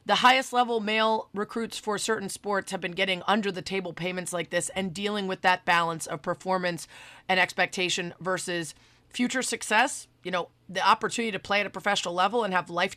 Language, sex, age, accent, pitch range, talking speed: English, female, 30-49, American, 180-230 Hz, 195 wpm